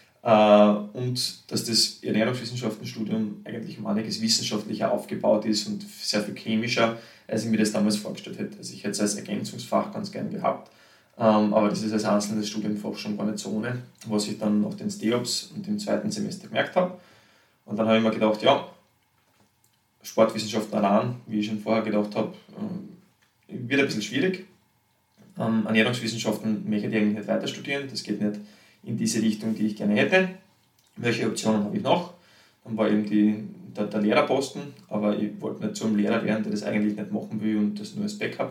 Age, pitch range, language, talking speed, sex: 20-39, 105-120 Hz, German, 180 wpm, male